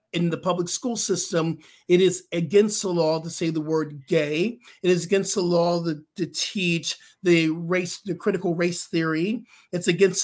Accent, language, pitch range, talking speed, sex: American, English, 165-195 Hz, 180 wpm, male